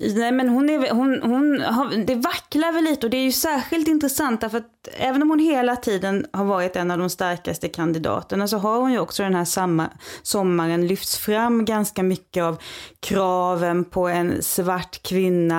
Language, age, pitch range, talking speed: Swedish, 20-39, 185-240 Hz, 190 wpm